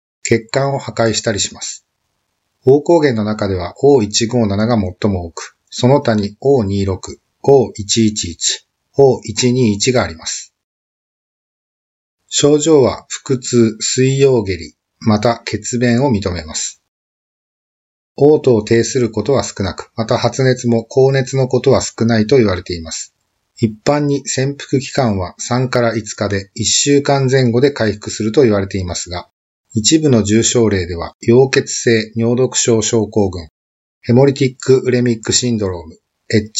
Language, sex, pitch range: Japanese, male, 100-130 Hz